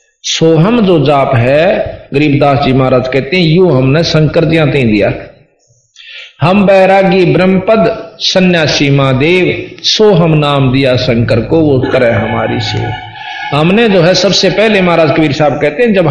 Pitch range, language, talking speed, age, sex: 140-180 Hz, Hindi, 155 wpm, 50-69, male